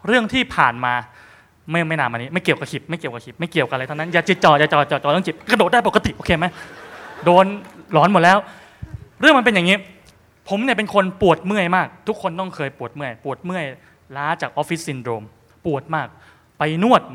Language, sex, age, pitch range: Thai, male, 20-39, 130-185 Hz